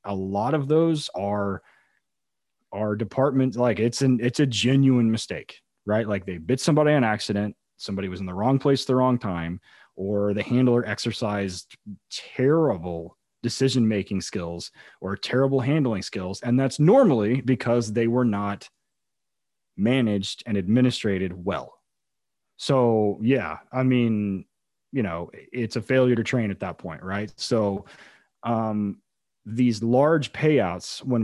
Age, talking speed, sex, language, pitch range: 30-49, 140 wpm, male, English, 95-125 Hz